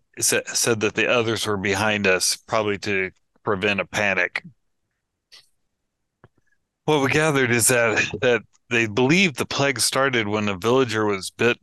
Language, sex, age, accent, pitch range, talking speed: English, male, 30-49, American, 100-120 Hz, 145 wpm